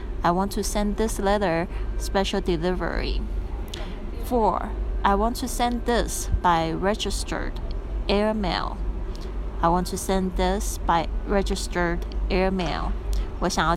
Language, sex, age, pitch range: Chinese, female, 30-49, 165-210 Hz